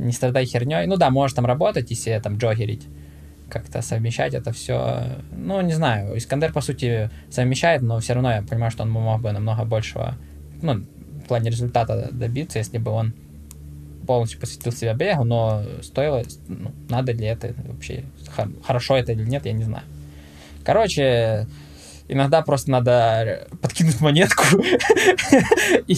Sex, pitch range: male, 110-135 Hz